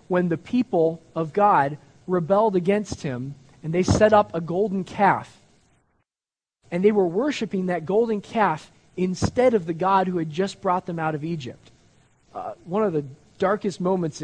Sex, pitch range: male, 160-205 Hz